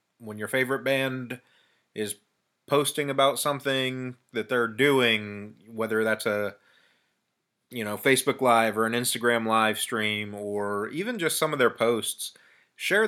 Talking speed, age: 140 wpm, 30-49